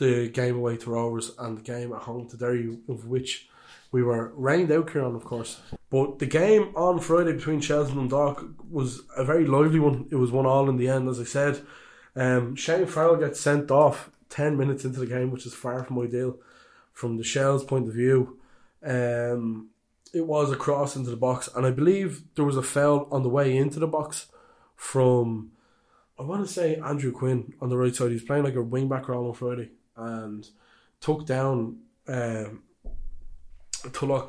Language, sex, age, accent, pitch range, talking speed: English, male, 20-39, Irish, 120-145 Hz, 200 wpm